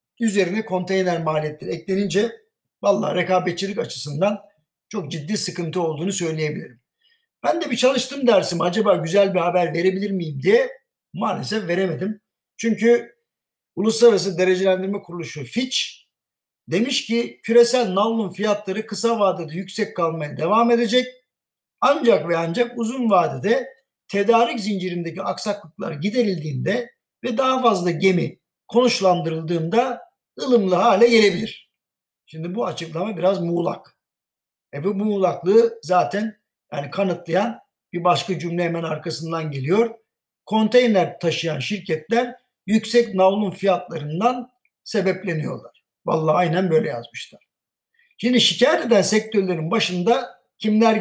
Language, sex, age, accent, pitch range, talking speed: Turkish, male, 60-79, native, 175-230 Hz, 110 wpm